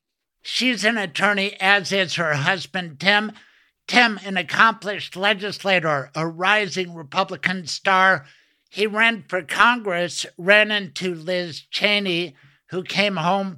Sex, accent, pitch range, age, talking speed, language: male, American, 180-205 Hz, 60-79, 120 wpm, English